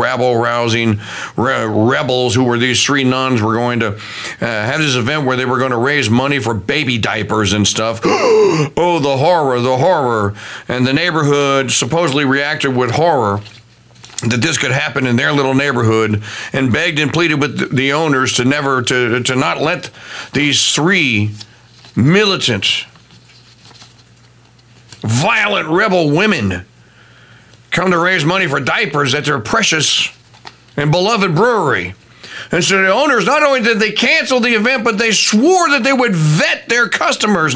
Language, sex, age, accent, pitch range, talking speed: English, male, 50-69, American, 120-195 Hz, 150 wpm